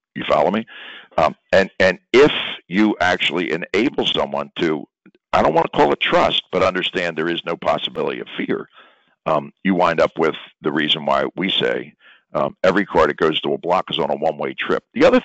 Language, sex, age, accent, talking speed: English, male, 60-79, American, 205 wpm